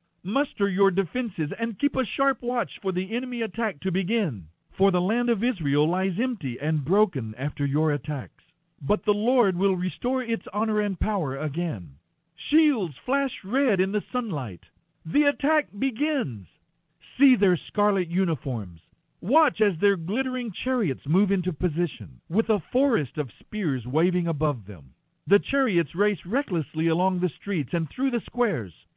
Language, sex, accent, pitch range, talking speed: English, male, American, 150-230 Hz, 155 wpm